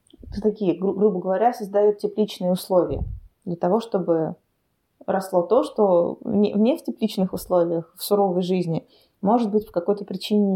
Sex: female